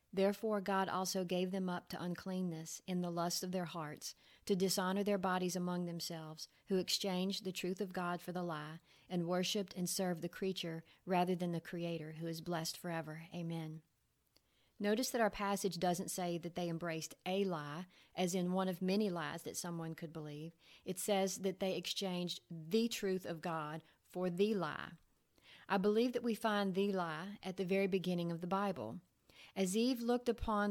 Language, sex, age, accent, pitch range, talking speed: English, female, 40-59, American, 170-200 Hz, 185 wpm